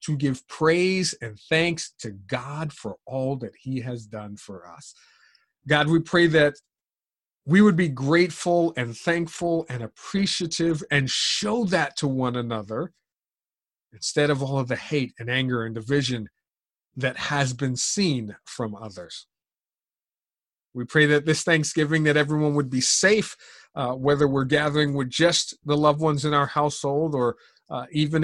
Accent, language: American, English